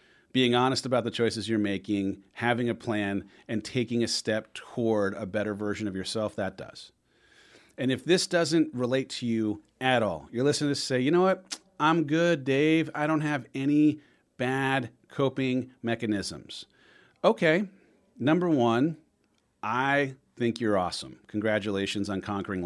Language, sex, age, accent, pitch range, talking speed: English, male, 40-59, American, 110-140 Hz, 155 wpm